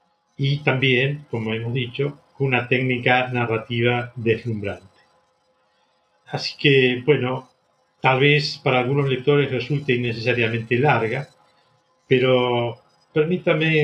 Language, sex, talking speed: Spanish, male, 95 wpm